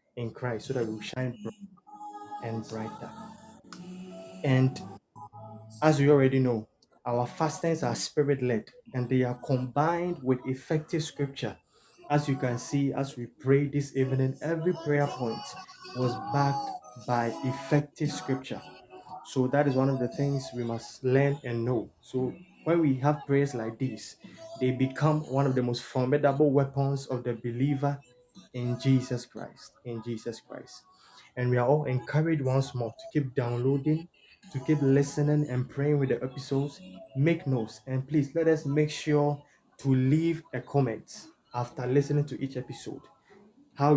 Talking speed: 155 wpm